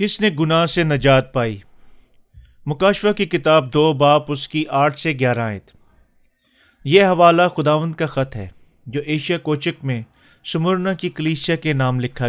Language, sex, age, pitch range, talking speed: Urdu, male, 30-49, 135-165 Hz, 155 wpm